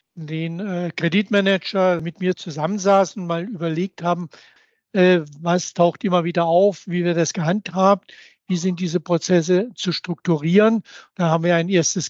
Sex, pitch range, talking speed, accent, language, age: male, 175-205 Hz, 155 wpm, German, German, 60-79